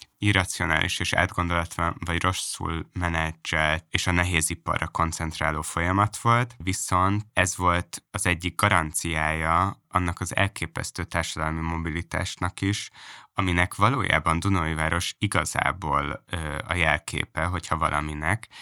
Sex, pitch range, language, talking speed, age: male, 80-100 Hz, Hungarian, 115 wpm, 20-39